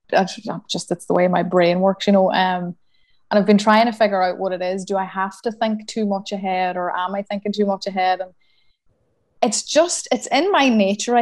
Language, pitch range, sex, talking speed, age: English, 185-210 Hz, female, 225 wpm, 20-39